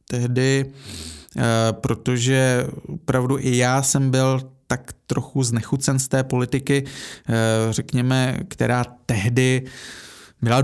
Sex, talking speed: male, 95 wpm